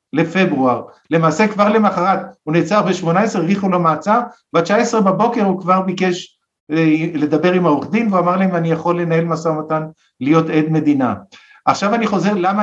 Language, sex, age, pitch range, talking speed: Hebrew, male, 50-69, 170-220 Hz, 180 wpm